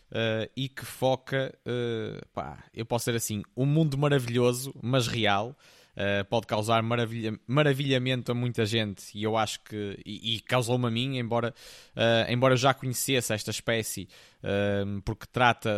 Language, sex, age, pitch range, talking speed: Portuguese, male, 20-39, 115-135 Hz, 160 wpm